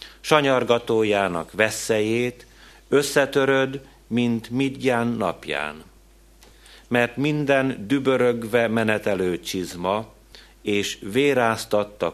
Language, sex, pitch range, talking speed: Hungarian, male, 95-125 Hz, 65 wpm